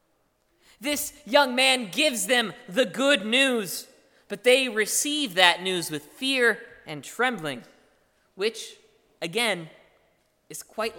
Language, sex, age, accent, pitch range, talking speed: English, male, 20-39, American, 155-245 Hz, 115 wpm